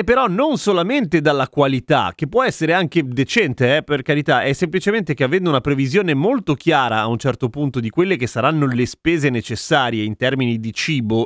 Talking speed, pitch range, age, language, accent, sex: 190 wpm, 135-190 Hz, 30-49, Italian, native, male